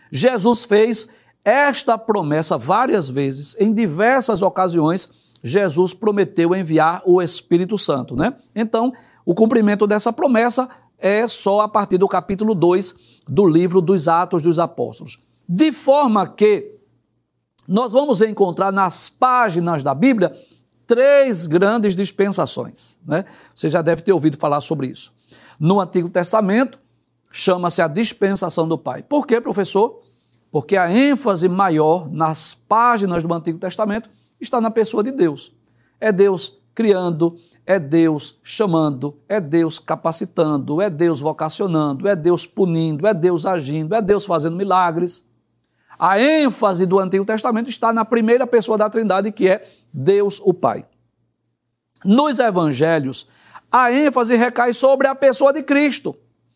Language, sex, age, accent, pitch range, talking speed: Portuguese, male, 60-79, Brazilian, 165-225 Hz, 135 wpm